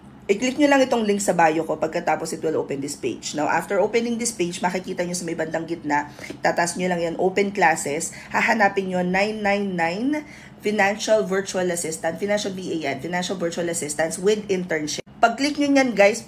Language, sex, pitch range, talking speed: English, female, 160-200 Hz, 175 wpm